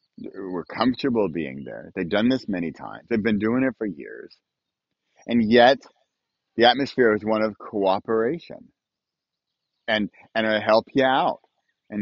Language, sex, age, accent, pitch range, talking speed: English, male, 40-59, American, 105-135 Hz, 150 wpm